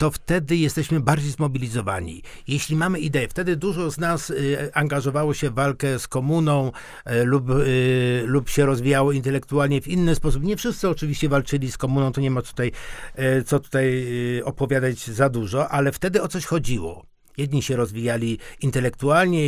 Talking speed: 170 wpm